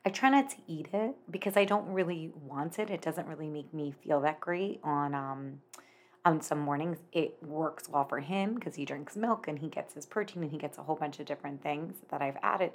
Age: 30-49